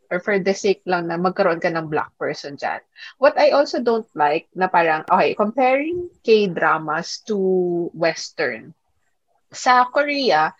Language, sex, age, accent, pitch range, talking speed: Filipino, female, 20-39, native, 175-240 Hz, 145 wpm